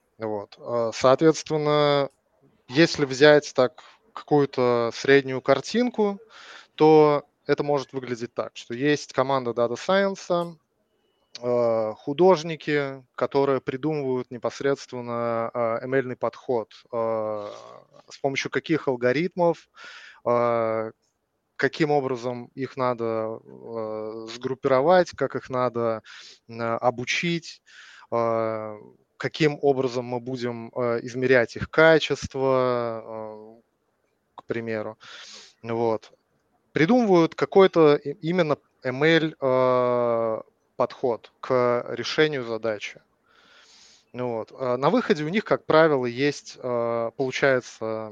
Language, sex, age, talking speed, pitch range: Russian, male, 20-39, 75 wpm, 115-145 Hz